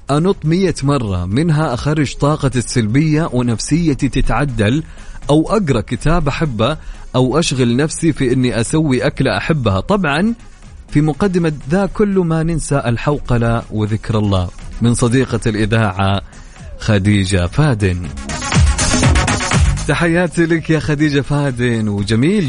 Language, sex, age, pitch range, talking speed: Arabic, male, 30-49, 115-160 Hz, 110 wpm